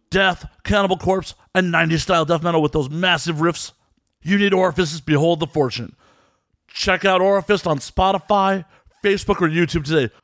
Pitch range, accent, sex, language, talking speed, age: 125-175 Hz, American, male, English, 150 wpm, 40-59